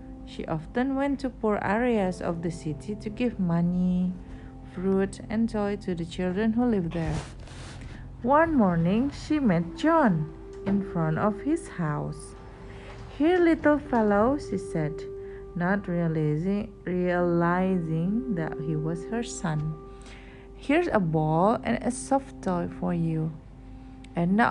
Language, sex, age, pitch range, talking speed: Indonesian, female, 40-59, 155-220 Hz, 130 wpm